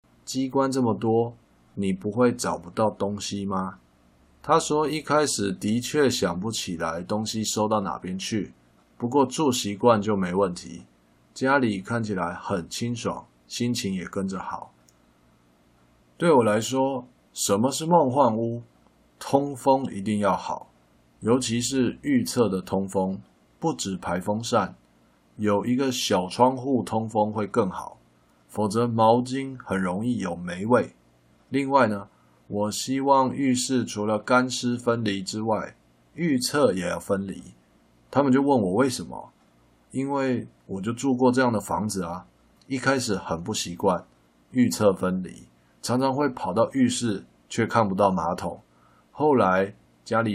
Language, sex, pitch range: Chinese, male, 85-125 Hz